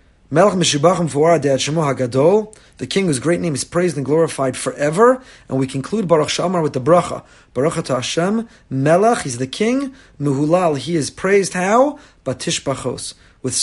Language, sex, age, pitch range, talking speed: English, male, 30-49, 145-205 Hz, 140 wpm